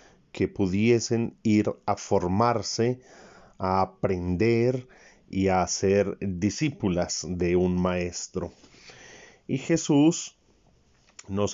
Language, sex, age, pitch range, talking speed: Spanish, male, 40-59, 95-120 Hz, 90 wpm